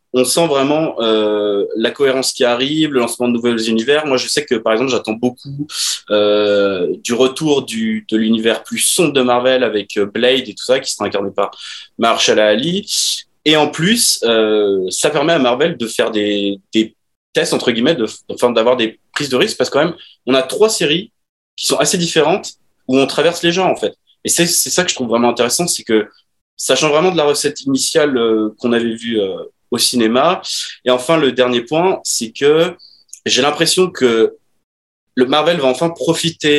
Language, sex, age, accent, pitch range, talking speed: French, male, 20-39, French, 115-155 Hz, 205 wpm